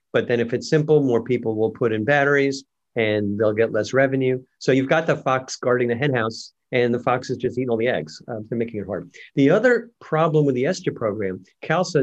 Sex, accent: male, American